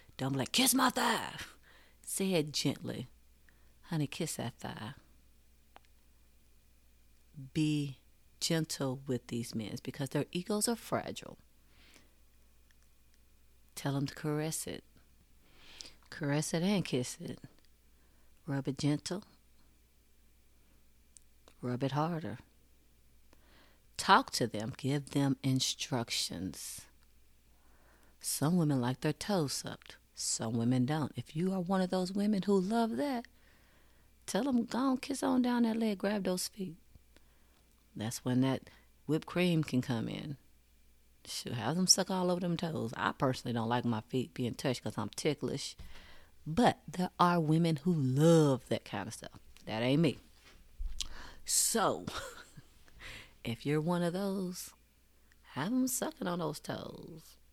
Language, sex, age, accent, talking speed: English, female, 40-59, American, 130 wpm